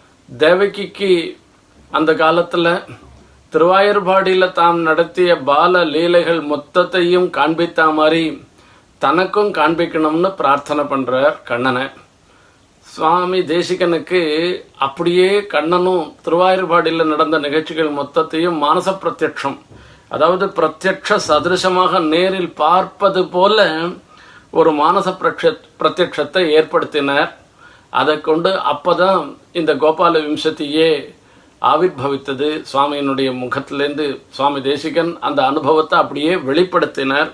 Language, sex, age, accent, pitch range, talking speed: Tamil, male, 50-69, native, 150-185 Hz, 80 wpm